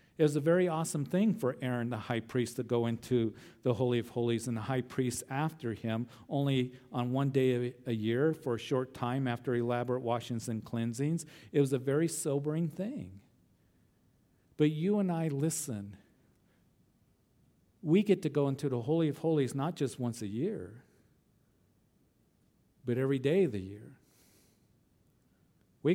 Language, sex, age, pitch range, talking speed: English, male, 50-69, 120-150 Hz, 165 wpm